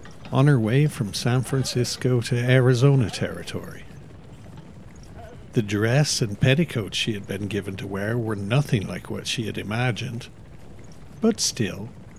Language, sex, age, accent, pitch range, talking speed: English, male, 60-79, Irish, 105-130 Hz, 140 wpm